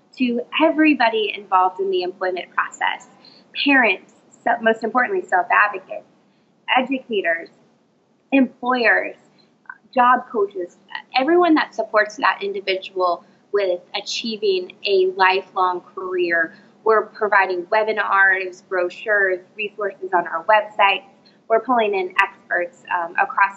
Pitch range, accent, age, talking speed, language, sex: 185-230 Hz, American, 20-39, 100 wpm, English, female